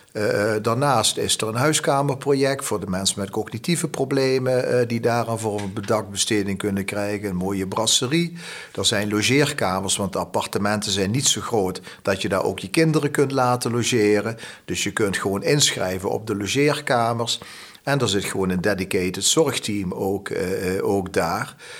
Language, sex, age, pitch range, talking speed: Dutch, male, 50-69, 100-135 Hz, 165 wpm